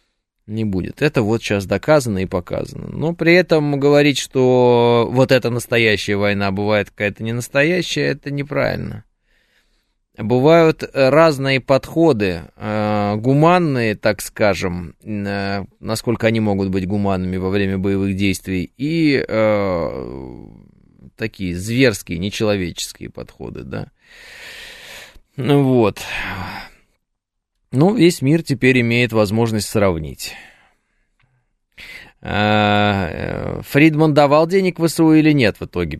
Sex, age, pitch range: male, 20-39, 100-145 Hz